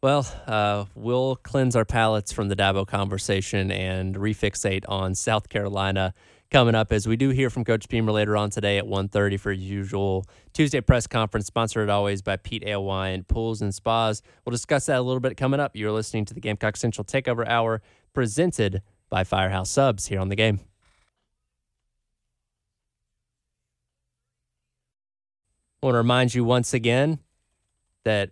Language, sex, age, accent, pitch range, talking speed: English, male, 20-39, American, 95-115 Hz, 160 wpm